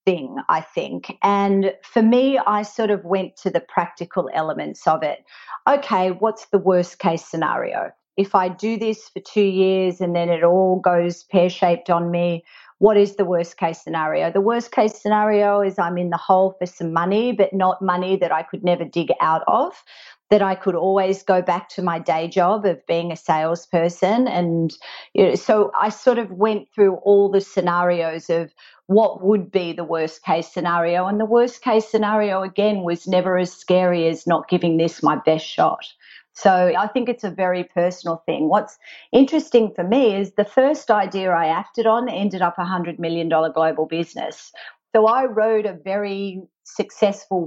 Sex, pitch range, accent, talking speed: female, 170-210 Hz, Australian, 185 wpm